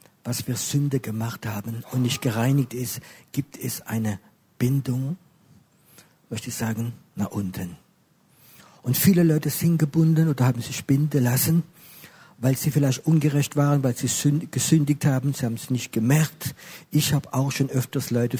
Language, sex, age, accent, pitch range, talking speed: German, male, 50-69, German, 120-150 Hz, 155 wpm